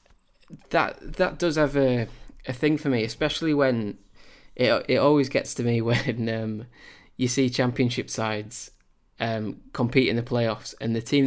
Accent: British